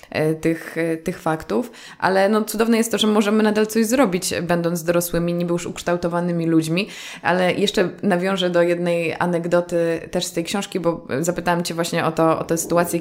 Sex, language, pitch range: female, Polish, 165-195 Hz